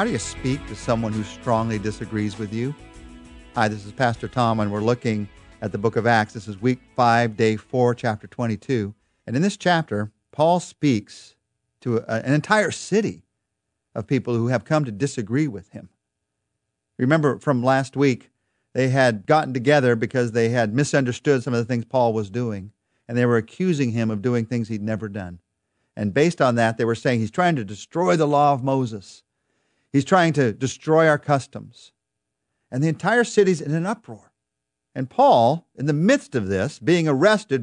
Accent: American